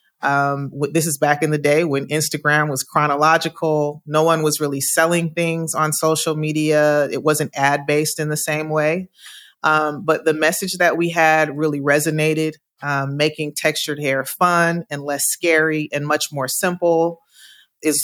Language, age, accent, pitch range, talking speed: English, 30-49, American, 135-155 Hz, 165 wpm